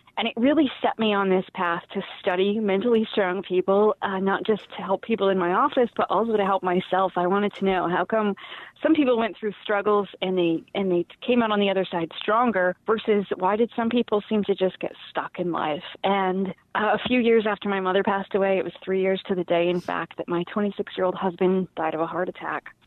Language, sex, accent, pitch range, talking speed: English, female, American, 185-220 Hz, 235 wpm